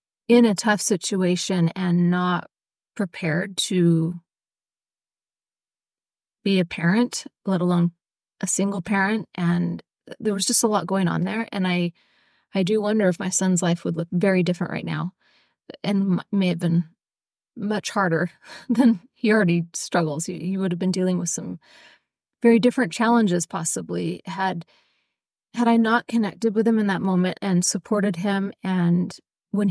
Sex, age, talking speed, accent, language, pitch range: female, 30-49, 155 wpm, American, English, 180-215 Hz